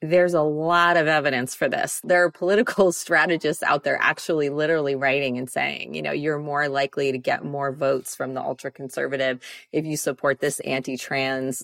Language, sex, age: English, female, 30-49